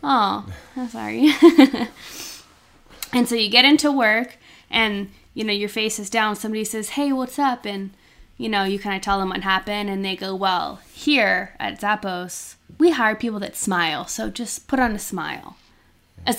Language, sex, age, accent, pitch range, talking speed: English, female, 20-39, American, 190-225 Hz, 185 wpm